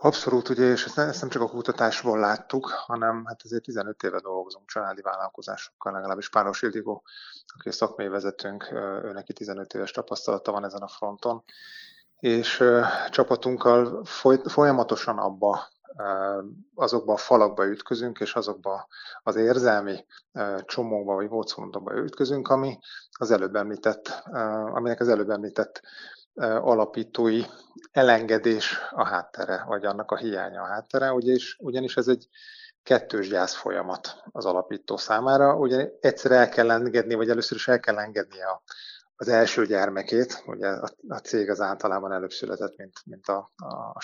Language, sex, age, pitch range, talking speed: Hungarian, male, 30-49, 105-125 Hz, 130 wpm